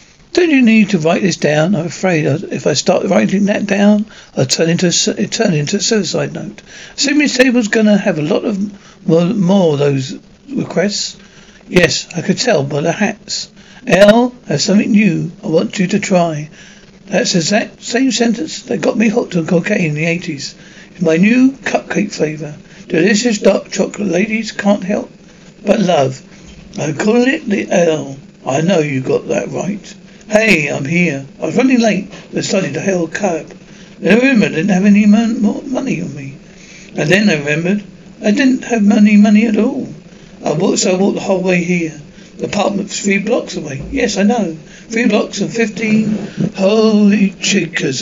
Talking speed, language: 180 wpm, English